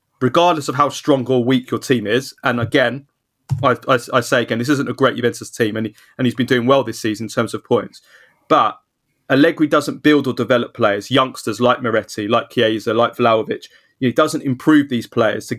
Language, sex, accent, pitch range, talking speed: English, male, British, 120-150 Hz, 210 wpm